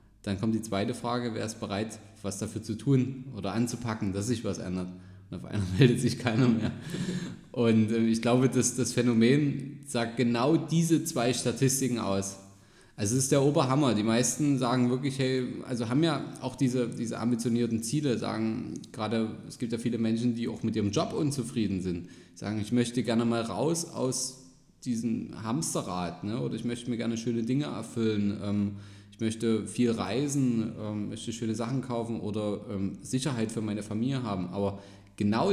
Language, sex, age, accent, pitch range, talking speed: German, male, 20-39, German, 110-130 Hz, 180 wpm